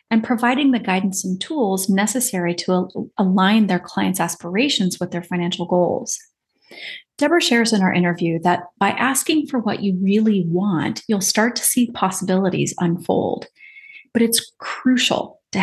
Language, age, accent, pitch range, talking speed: English, 30-49, American, 180-240 Hz, 155 wpm